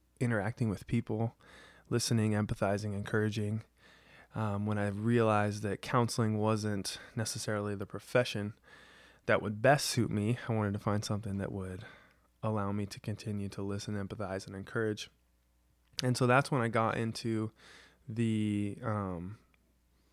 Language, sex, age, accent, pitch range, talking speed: English, male, 20-39, American, 100-115 Hz, 135 wpm